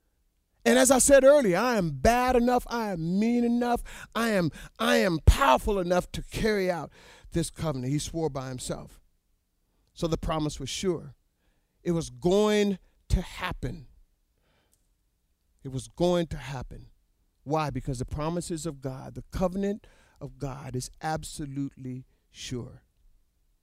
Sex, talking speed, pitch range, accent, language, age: male, 140 wpm, 130-195 Hz, American, English, 50-69